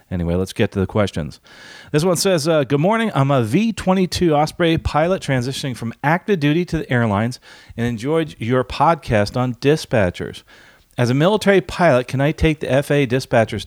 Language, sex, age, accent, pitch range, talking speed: English, male, 40-59, American, 105-140 Hz, 175 wpm